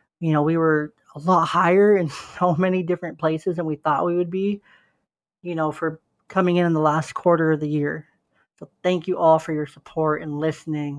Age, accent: 40-59, American